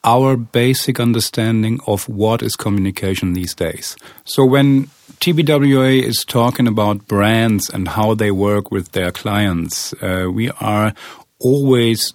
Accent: German